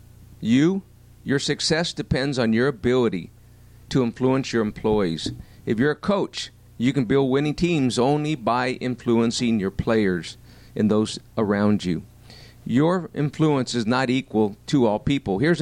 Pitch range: 110-140 Hz